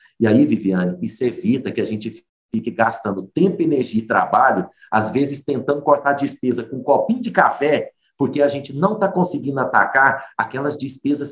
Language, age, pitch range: Portuguese, 50-69, 115-165 Hz